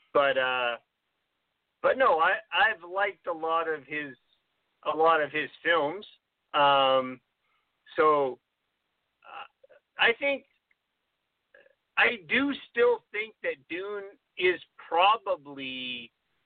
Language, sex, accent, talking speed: English, male, American, 105 wpm